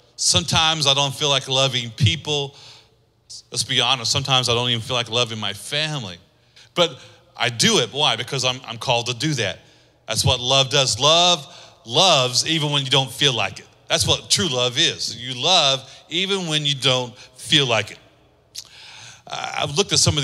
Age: 40-59